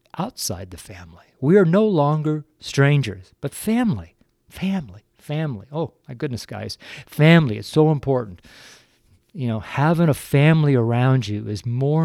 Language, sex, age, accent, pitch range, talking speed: English, male, 50-69, American, 110-150 Hz, 145 wpm